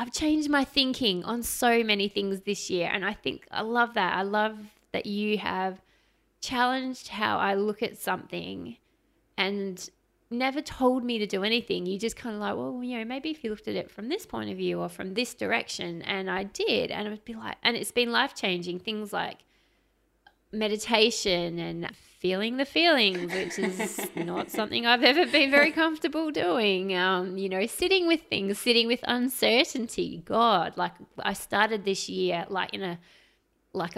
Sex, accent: female, Australian